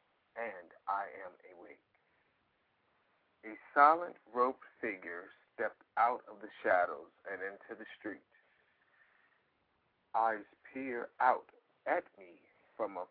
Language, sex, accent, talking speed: English, male, American, 110 wpm